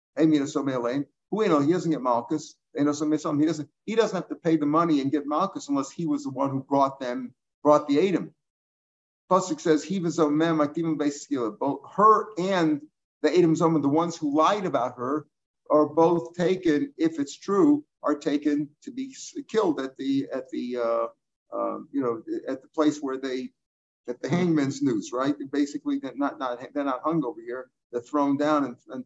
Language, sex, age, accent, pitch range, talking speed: English, male, 50-69, American, 140-170 Hz, 185 wpm